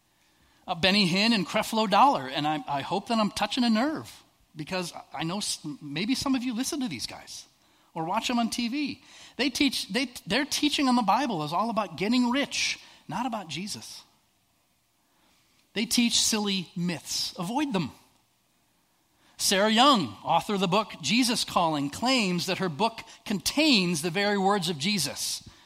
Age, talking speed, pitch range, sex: 40-59, 170 wpm, 155-230 Hz, male